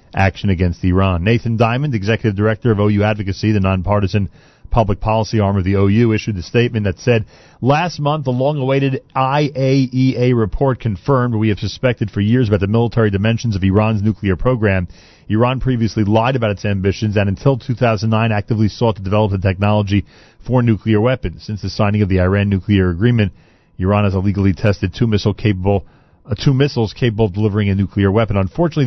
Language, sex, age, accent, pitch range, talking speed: English, male, 40-59, American, 95-115 Hz, 175 wpm